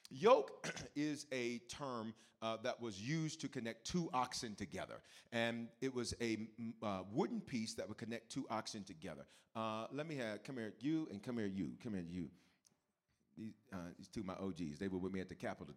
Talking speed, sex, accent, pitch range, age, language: 205 wpm, male, American, 115-190 Hz, 40-59, English